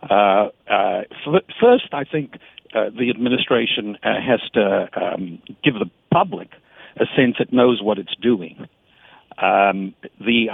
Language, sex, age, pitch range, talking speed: English, male, 60-79, 110-140 Hz, 135 wpm